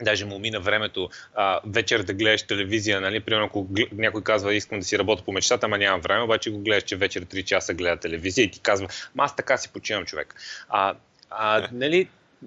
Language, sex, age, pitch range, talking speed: Bulgarian, male, 30-49, 105-145 Hz, 200 wpm